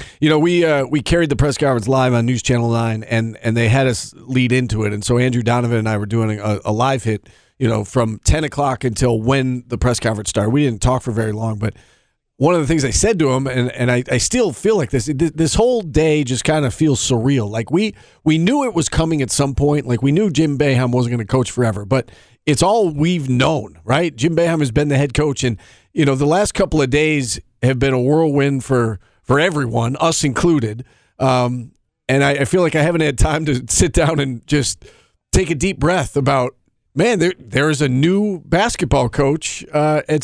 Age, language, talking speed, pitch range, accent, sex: 40-59, English, 235 wpm, 125-165 Hz, American, male